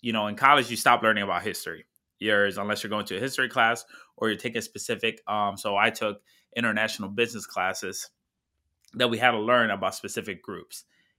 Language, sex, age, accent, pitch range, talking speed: English, male, 20-39, American, 105-125 Hz, 195 wpm